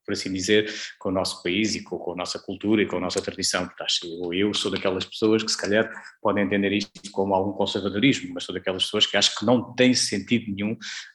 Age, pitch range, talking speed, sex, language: 20-39, 100-125 Hz, 230 wpm, male, Portuguese